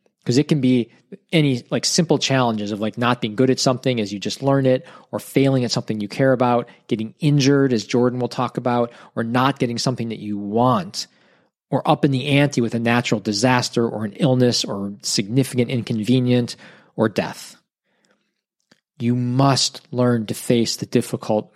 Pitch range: 115-135 Hz